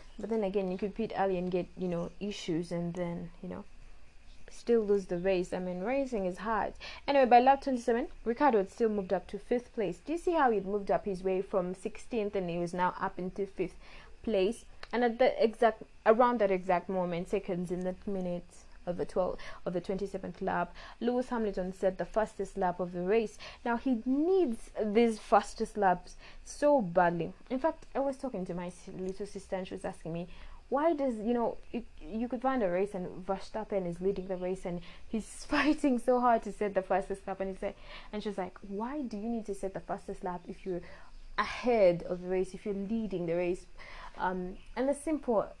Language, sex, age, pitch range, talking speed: English, female, 20-39, 185-230 Hz, 215 wpm